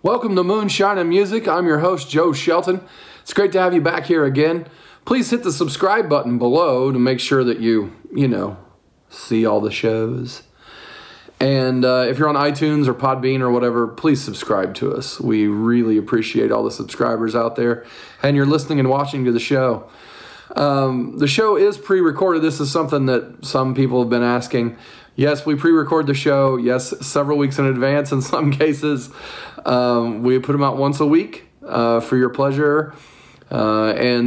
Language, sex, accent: English, male, American